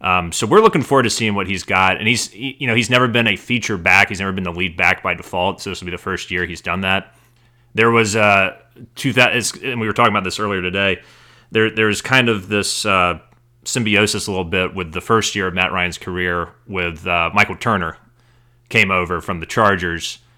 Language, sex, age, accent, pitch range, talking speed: English, male, 30-49, American, 95-115 Hz, 235 wpm